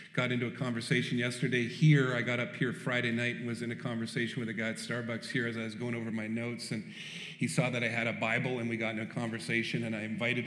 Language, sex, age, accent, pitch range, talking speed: English, male, 40-59, American, 125-160 Hz, 270 wpm